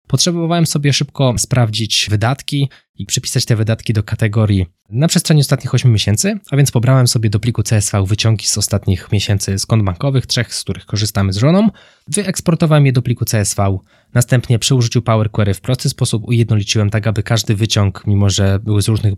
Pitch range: 105-135 Hz